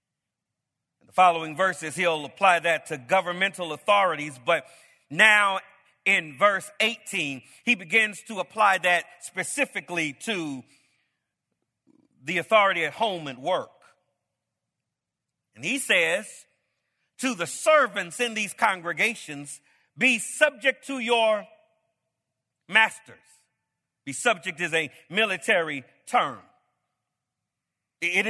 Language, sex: English, male